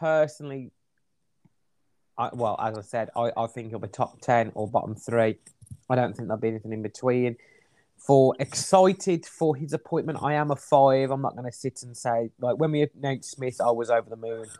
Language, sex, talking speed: English, male, 205 wpm